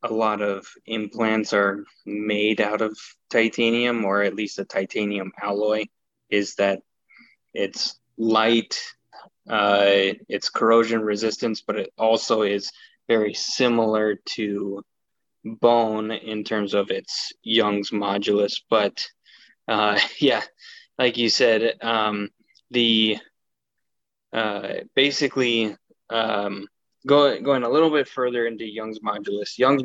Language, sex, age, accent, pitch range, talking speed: English, male, 10-29, American, 105-125 Hz, 115 wpm